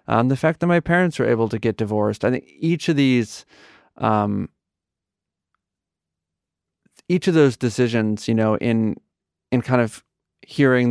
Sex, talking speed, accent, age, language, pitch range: male, 140 wpm, American, 30-49, English, 105-130 Hz